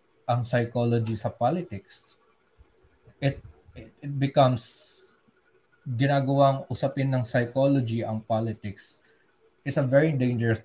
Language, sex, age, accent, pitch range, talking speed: Filipino, male, 20-39, native, 105-125 Hz, 100 wpm